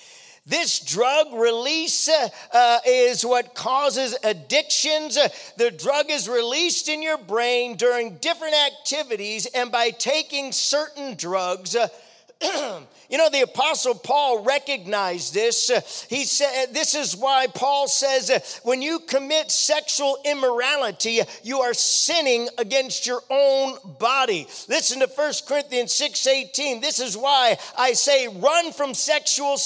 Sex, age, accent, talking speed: male, 40-59, American, 125 wpm